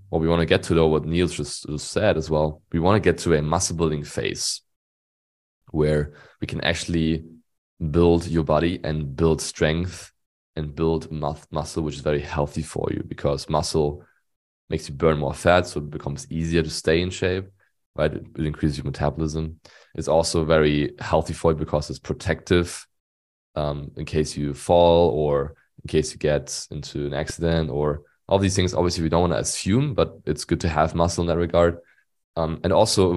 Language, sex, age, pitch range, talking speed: English, male, 20-39, 75-85 Hz, 195 wpm